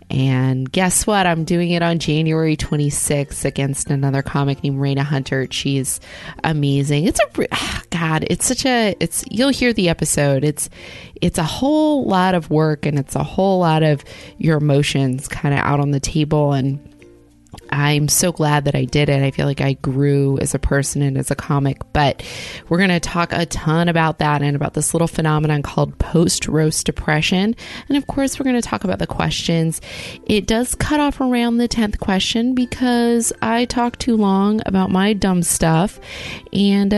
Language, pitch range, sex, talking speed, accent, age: English, 145-195 Hz, female, 185 wpm, American, 20-39